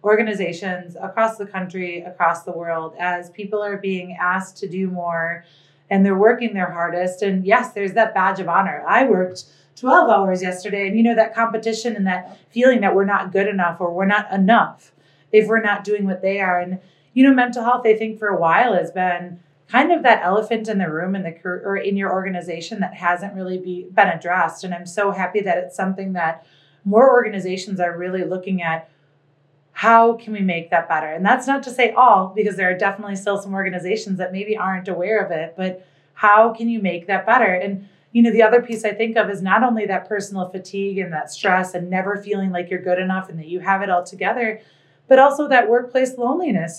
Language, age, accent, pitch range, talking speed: English, 30-49, American, 180-215 Hz, 220 wpm